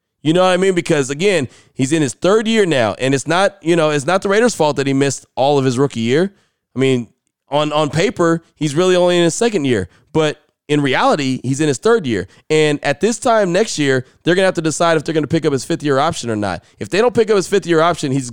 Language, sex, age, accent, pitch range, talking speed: English, male, 30-49, American, 135-170 Hz, 270 wpm